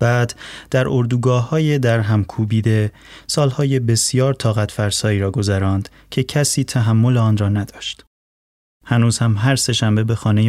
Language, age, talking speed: Persian, 30-49, 135 wpm